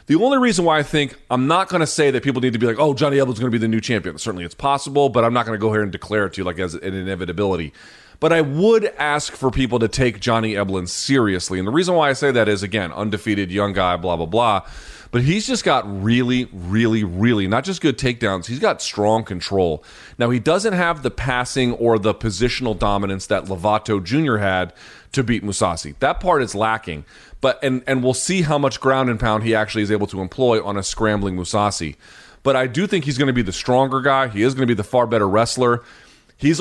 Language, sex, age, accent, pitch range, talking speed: English, male, 30-49, American, 105-135 Hz, 245 wpm